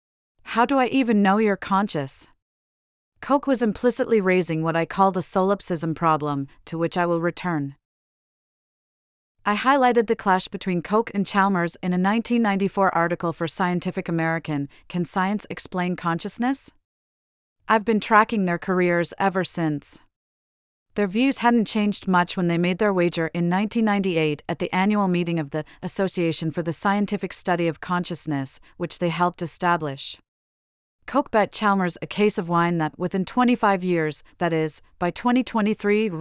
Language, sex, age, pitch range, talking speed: English, female, 40-59, 165-205 Hz, 150 wpm